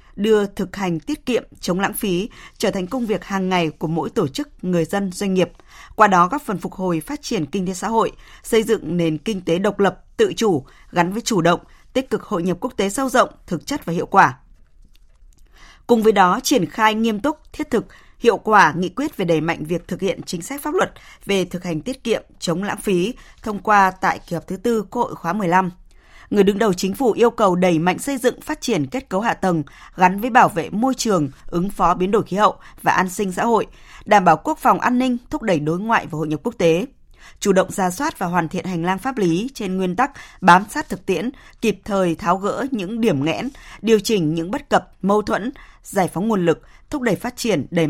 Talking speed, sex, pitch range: 240 wpm, female, 175-230 Hz